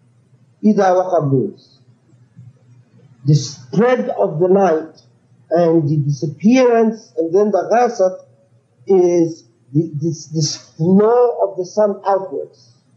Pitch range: 135-195 Hz